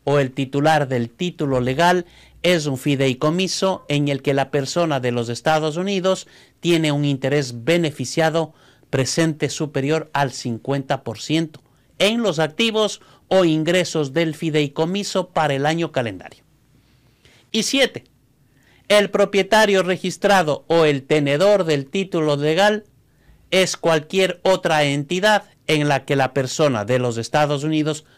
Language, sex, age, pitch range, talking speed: Spanish, male, 50-69, 135-175 Hz, 130 wpm